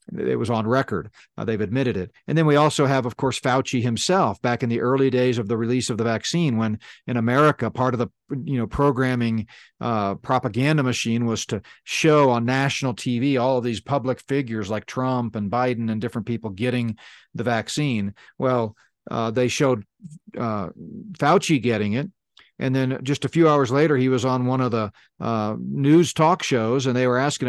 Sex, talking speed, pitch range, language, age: male, 195 wpm, 115-150 Hz, English, 40-59